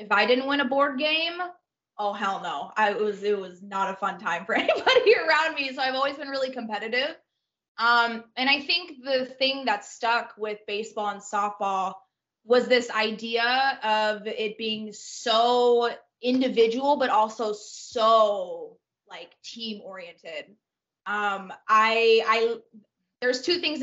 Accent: American